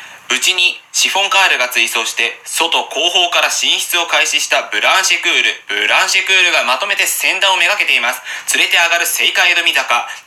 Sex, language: male, Japanese